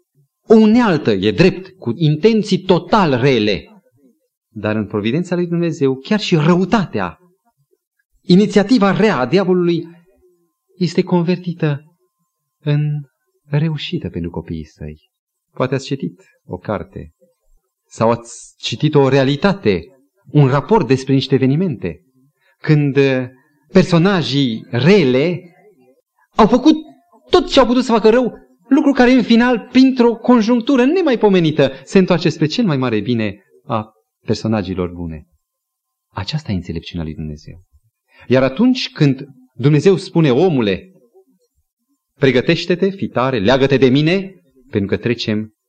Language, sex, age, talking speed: Romanian, male, 30-49, 120 wpm